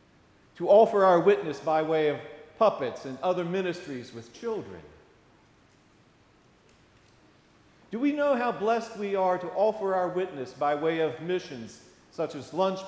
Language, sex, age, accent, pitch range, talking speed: English, male, 50-69, American, 145-190 Hz, 145 wpm